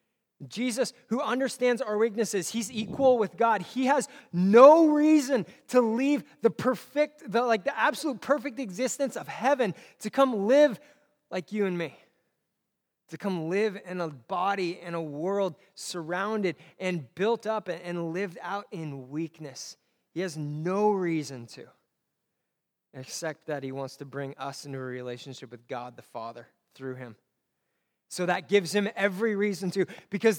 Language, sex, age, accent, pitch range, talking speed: English, male, 20-39, American, 155-230 Hz, 155 wpm